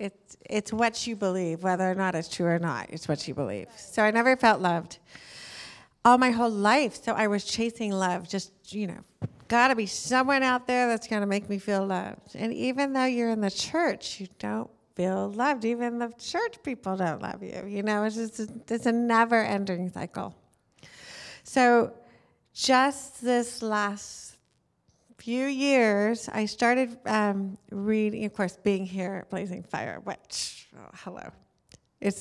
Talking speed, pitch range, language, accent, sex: 170 wpm, 190-235 Hz, English, American, female